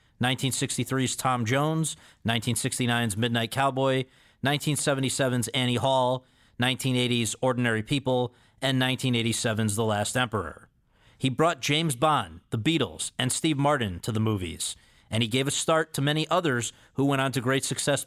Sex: male